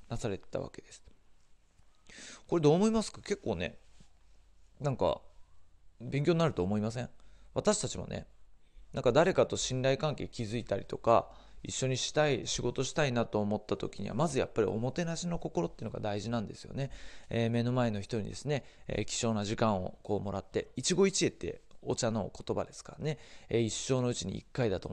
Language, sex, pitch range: Japanese, male, 105-140 Hz